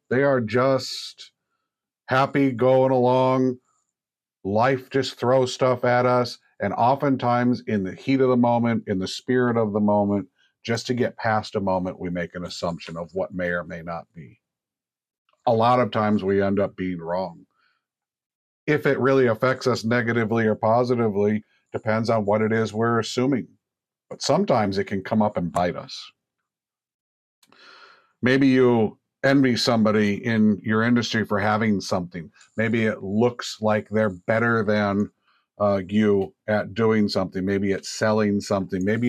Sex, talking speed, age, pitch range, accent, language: male, 160 wpm, 50-69, 105-125 Hz, American, English